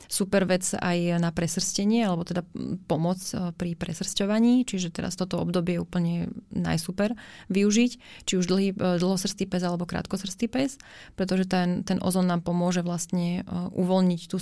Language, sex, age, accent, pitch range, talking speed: Czech, female, 20-39, native, 170-190 Hz, 145 wpm